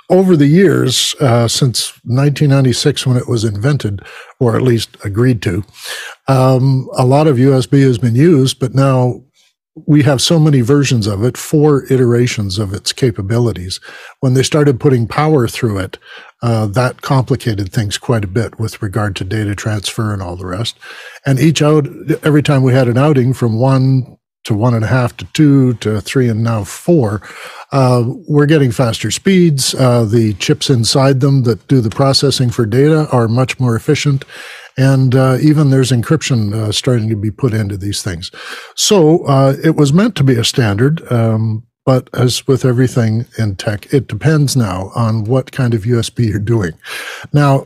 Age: 60-79